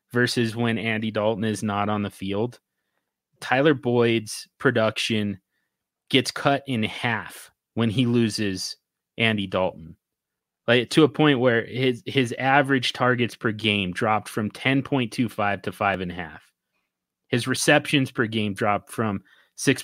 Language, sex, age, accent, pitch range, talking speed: English, male, 30-49, American, 100-125 Hz, 135 wpm